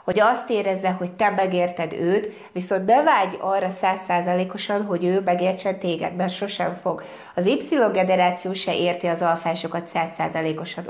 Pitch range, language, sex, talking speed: 175-210 Hz, Hungarian, female, 140 wpm